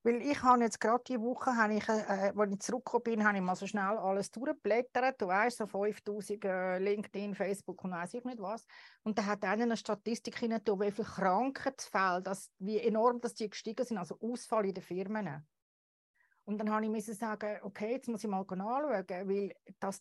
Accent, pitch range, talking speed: Austrian, 190-230 Hz, 175 wpm